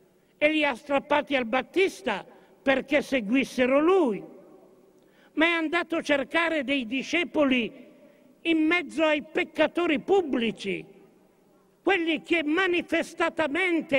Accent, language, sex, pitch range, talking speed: native, Italian, male, 255-320 Hz, 105 wpm